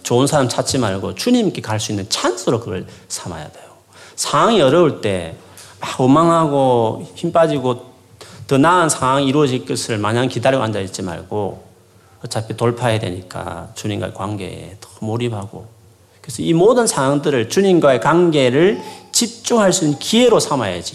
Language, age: Korean, 40-59